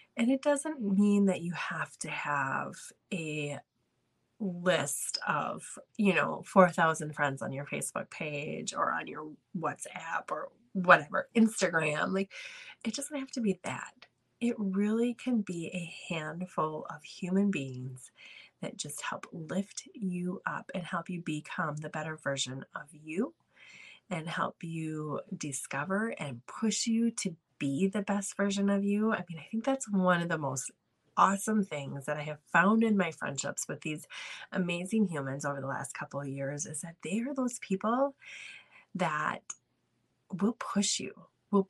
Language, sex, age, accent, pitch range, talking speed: English, female, 30-49, American, 160-220 Hz, 160 wpm